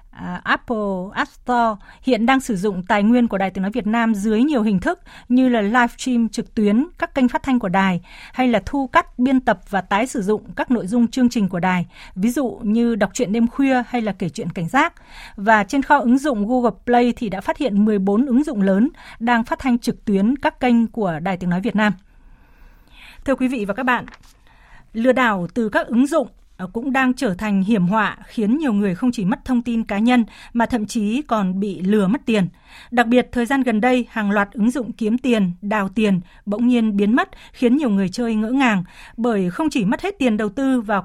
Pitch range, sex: 205-250 Hz, female